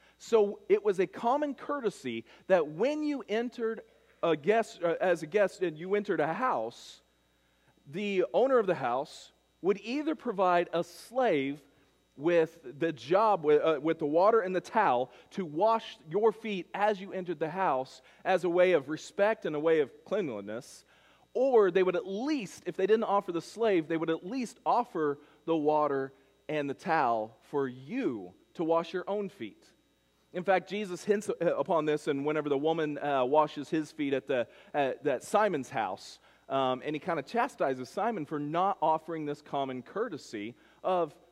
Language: English